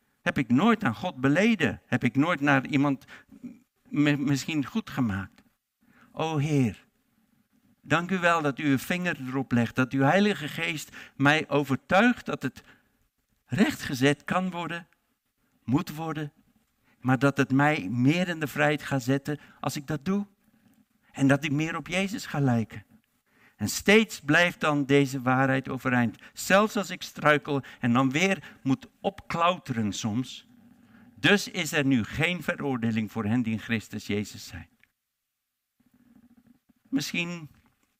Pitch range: 135-220 Hz